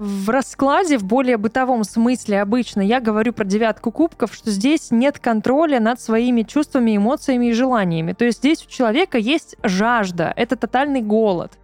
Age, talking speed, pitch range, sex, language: 20-39, 165 wpm, 205-250 Hz, female, Russian